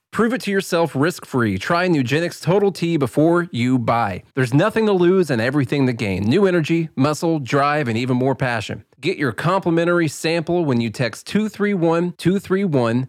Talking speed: 165 wpm